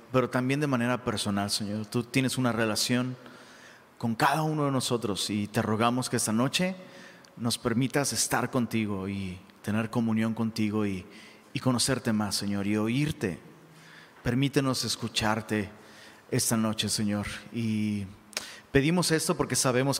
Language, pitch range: Spanish, 105-130 Hz